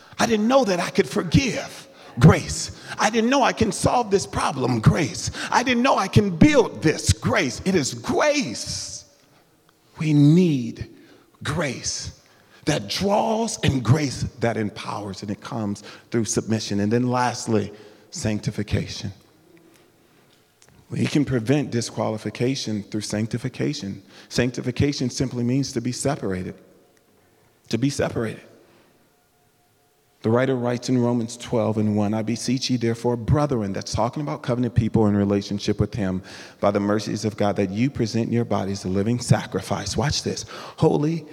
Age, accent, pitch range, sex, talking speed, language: 40-59, American, 105-135 Hz, male, 145 wpm, English